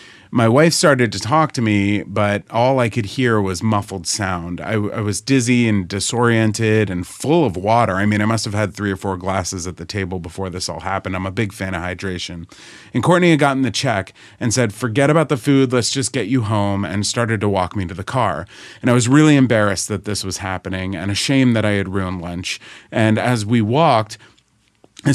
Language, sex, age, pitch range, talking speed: English, male, 30-49, 100-125 Hz, 225 wpm